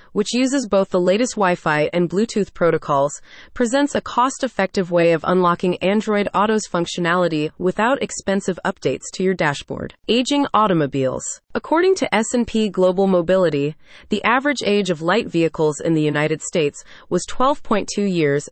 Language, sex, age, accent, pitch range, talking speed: English, female, 20-39, American, 170-220 Hz, 145 wpm